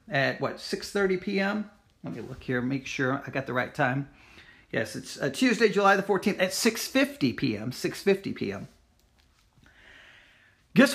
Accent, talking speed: American, 155 wpm